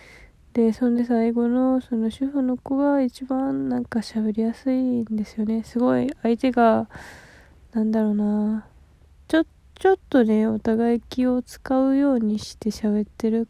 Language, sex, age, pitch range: Japanese, female, 20-39, 210-250 Hz